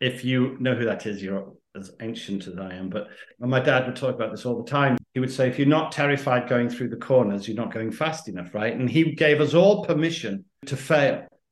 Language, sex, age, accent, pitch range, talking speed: English, male, 50-69, British, 115-150 Hz, 245 wpm